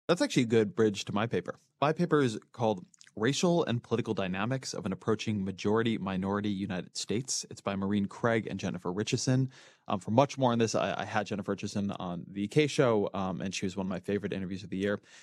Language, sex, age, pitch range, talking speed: English, male, 20-39, 100-130 Hz, 220 wpm